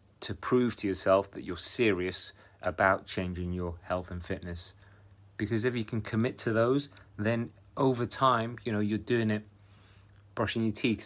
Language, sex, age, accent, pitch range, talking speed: English, male, 30-49, British, 95-110 Hz, 170 wpm